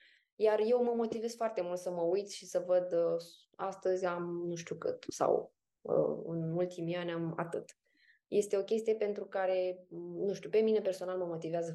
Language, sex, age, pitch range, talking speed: Romanian, female, 20-39, 170-210 Hz, 180 wpm